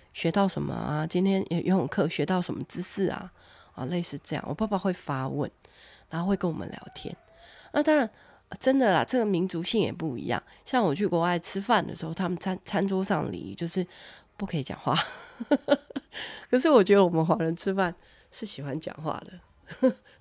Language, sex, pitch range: Chinese, female, 145-200 Hz